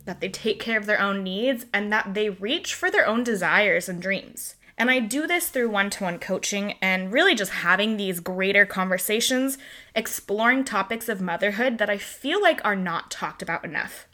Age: 20-39